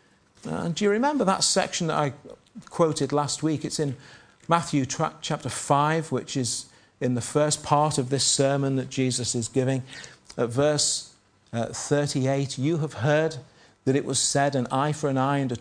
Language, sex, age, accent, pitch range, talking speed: English, male, 40-59, British, 130-155 Hz, 190 wpm